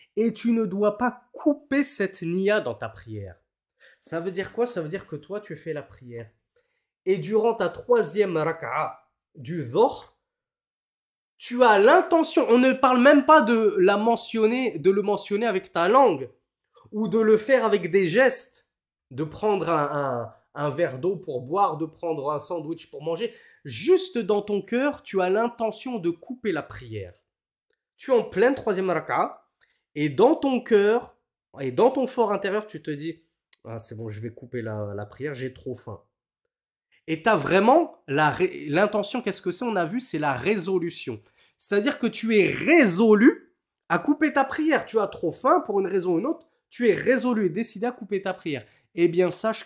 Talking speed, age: 185 wpm, 20-39